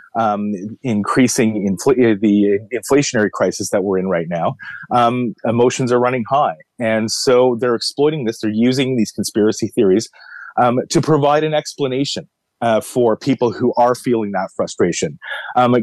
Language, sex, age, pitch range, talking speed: English, male, 30-49, 105-130 Hz, 150 wpm